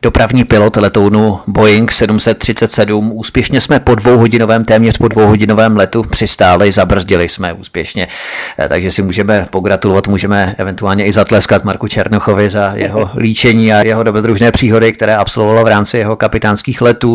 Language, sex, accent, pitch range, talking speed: Czech, male, native, 100-120 Hz, 145 wpm